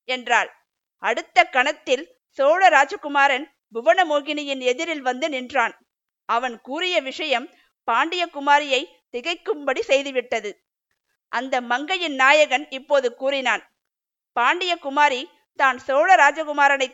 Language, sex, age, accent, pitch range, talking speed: Tamil, female, 50-69, native, 260-315 Hz, 85 wpm